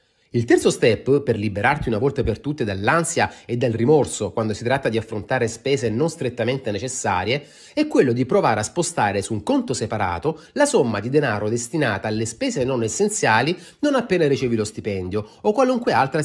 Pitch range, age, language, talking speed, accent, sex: 110-160 Hz, 30-49, Italian, 180 wpm, native, male